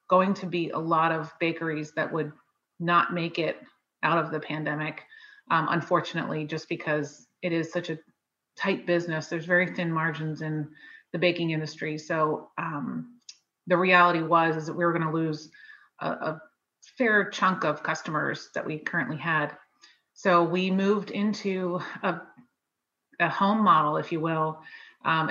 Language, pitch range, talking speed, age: English, 160-180 Hz, 160 wpm, 30-49